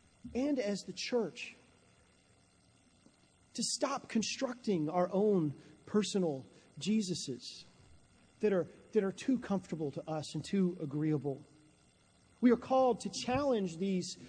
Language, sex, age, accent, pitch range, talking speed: English, male, 40-59, American, 155-210 Hz, 115 wpm